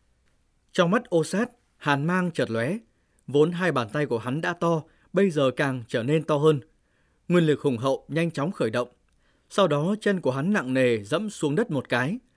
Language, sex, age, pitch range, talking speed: Vietnamese, male, 20-39, 135-180 Hz, 210 wpm